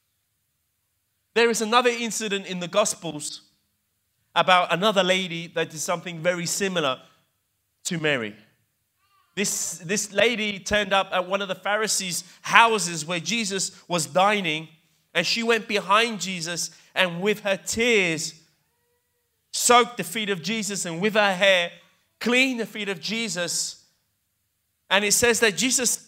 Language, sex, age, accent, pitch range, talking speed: Italian, male, 30-49, British, 165-215 Hz, 140 wpm